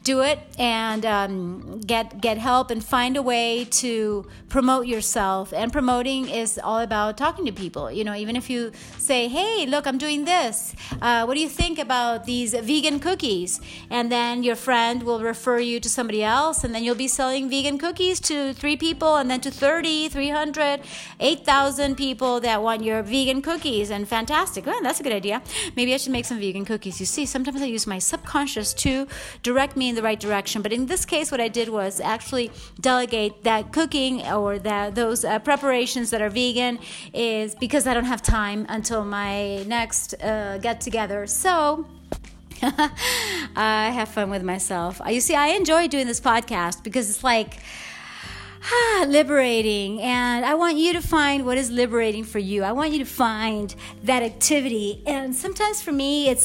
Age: 30-49